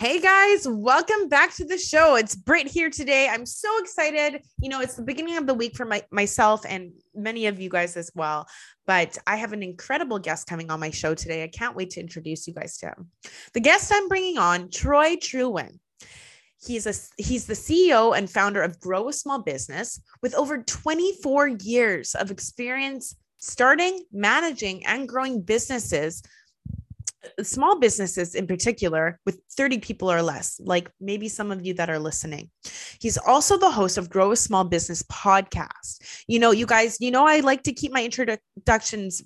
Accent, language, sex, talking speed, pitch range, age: American, English, female, 185 wpm, 185-270 Hz, 20-39